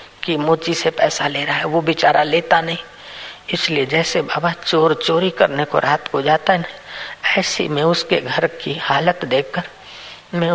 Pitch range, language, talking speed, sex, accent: 165-195 Hz, Hindi, 175 wpm, female, native